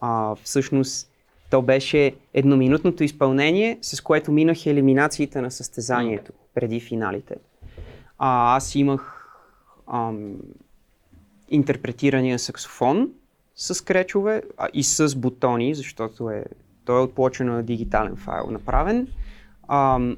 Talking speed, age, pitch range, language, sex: 105 wpm, 20-39, 125-155 Hz, Bulgarian, male